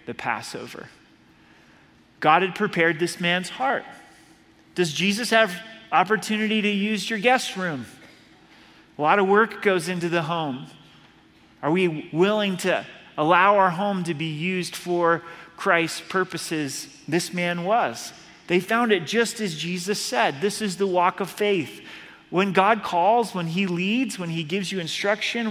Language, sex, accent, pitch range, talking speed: English, male, American, 170-205 Hz, 155 wpm